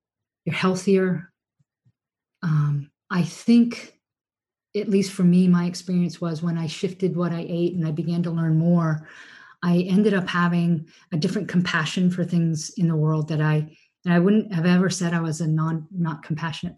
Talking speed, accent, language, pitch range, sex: 180 wpm, American, English, 160-185 Hz, female